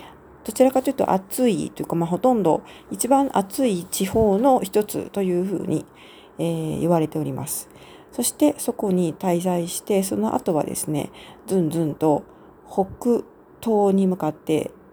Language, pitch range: Japanese, 155-200 Hz